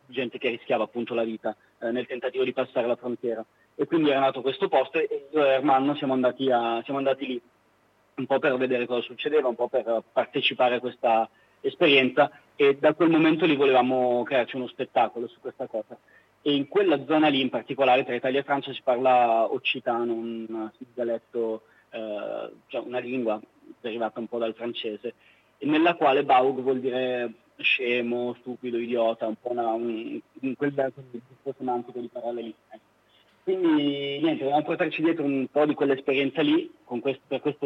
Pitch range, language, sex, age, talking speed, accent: 120-140 Hz, Italian, male, 30-49, 170 wpm, native